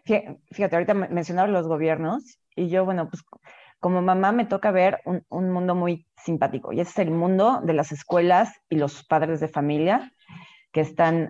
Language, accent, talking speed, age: Spanish, Mexican, 175 wpm, 30-49